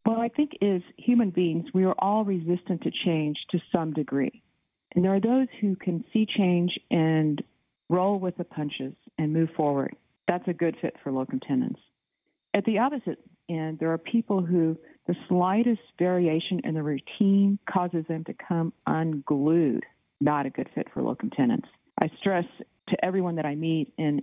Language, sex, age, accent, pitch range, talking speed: English, female, 50-69, American, 150-190 Hz, 180 wpm